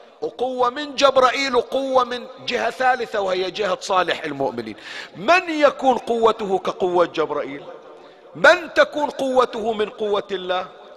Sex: male